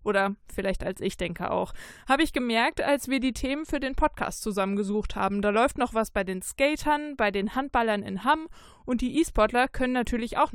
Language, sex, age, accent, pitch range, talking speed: German, female, 20-39, German, 205-255 Hz, 205 wpm